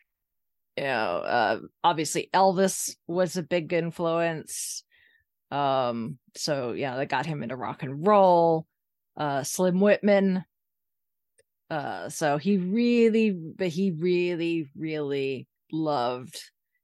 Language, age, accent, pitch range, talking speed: English, 30-49, American, 160-225 Hz, 110 wpm